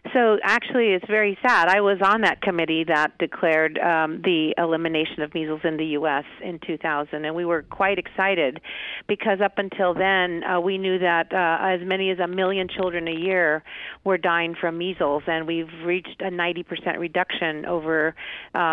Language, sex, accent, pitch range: English, female, American, 165-190 Hz